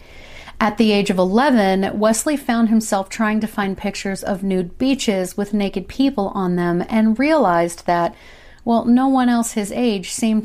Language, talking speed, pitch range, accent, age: English, 170 wpm, 185-235 Hz, American, 40-59